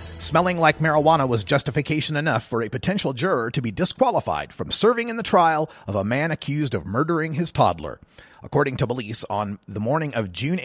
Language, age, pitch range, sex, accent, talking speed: English, 30-49, 125-170 Hz, male, American, 190 wpm